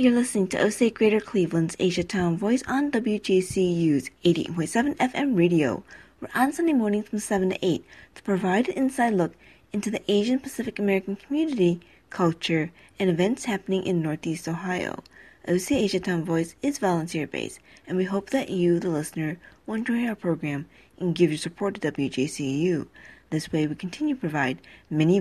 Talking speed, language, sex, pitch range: 165 wpm, English, female, 165-225 Hz